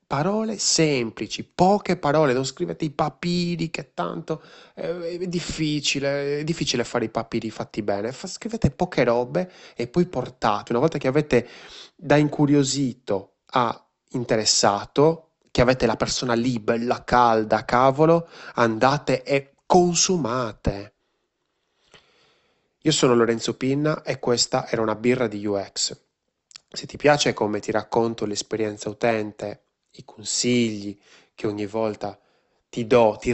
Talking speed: 130 wpm